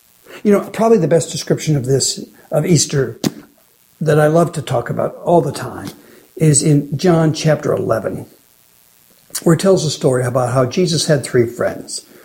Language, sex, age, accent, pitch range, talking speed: English, male, 60-79, American, 135-195 Hz, 170 wpm